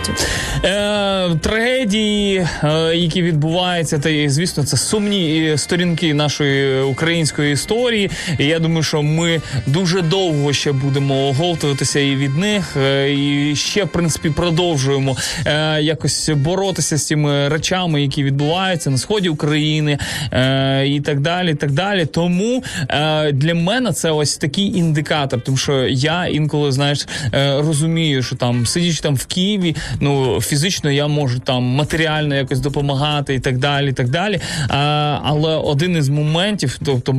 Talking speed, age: 135 wpm, 20-39